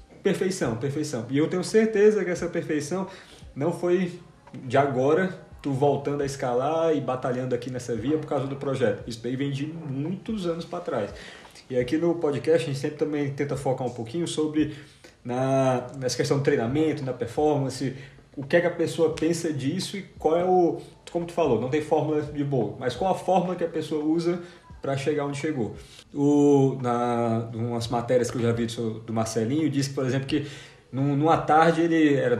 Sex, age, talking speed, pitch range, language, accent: male, 20-39, 195 wpm, 130-160 Hz, Portuguese, Brazilian